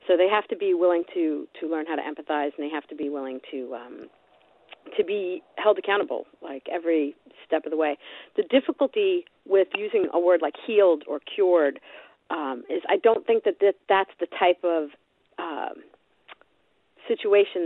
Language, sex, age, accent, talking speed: English, female, 40-59, American, 180 wpm